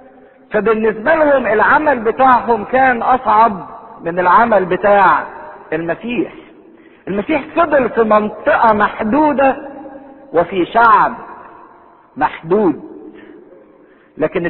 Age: 50-69